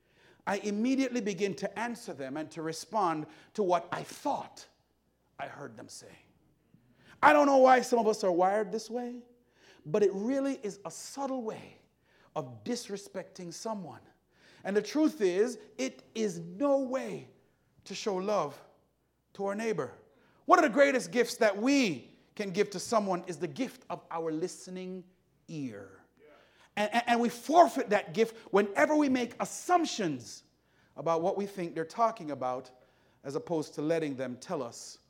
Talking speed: 160 wpm